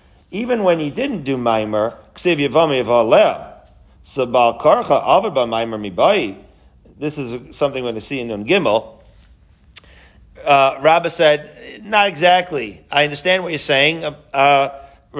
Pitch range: 125-160 Hz